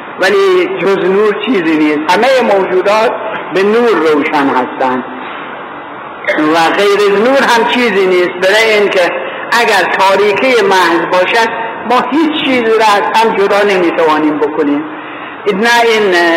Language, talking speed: Persian, 125 wpm